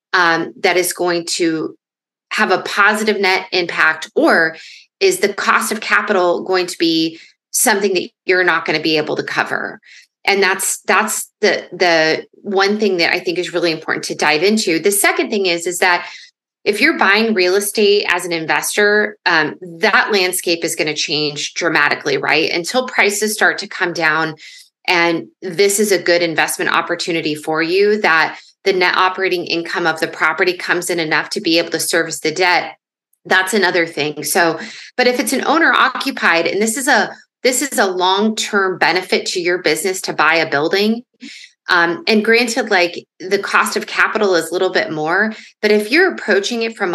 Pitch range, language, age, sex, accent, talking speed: 170-215 Hz, English, 20-39, female, American, 185 wpm